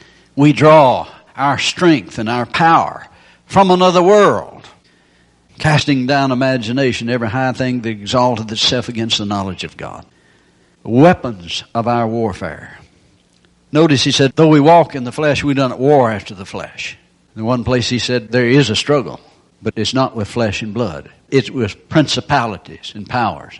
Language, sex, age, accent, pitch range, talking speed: English, male, 60-79, American, 115-150 Hz, 165 wpm